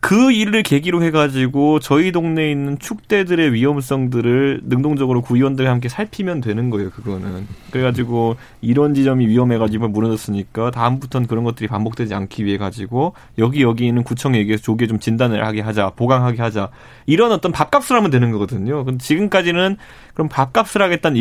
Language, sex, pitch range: Korean, male, 115-155 Hz